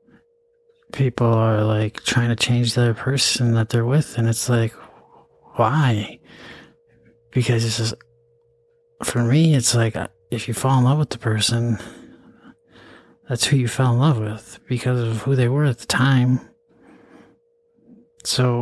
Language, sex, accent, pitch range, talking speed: English, male, American, 115-130 Hz, 150 wpm